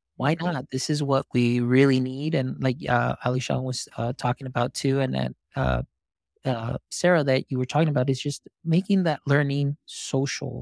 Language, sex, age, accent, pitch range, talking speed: English, male, 30-49, American, 125-145 Hz, 185 wpm